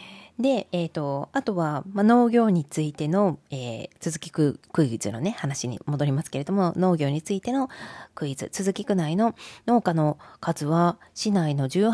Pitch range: 155-235 Hz